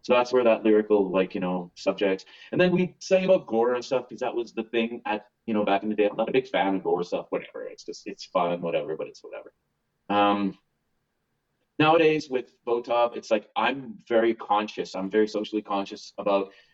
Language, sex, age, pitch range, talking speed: English, male, 30-49, 105-135 Hz, 215 wpm